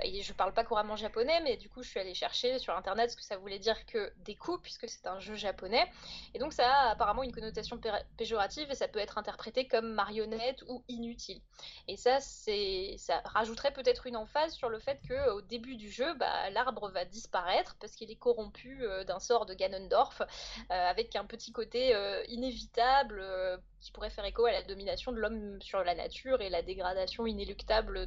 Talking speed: 210 wpm